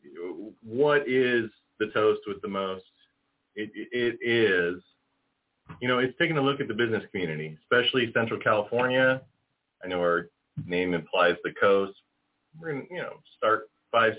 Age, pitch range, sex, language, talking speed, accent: 30-49, 100-130 Hz, male, English, 155 wpm, American